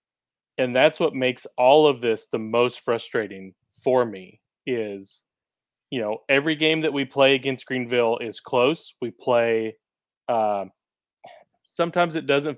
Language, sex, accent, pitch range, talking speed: English, male, American, 115-130 Hz, 145 wpm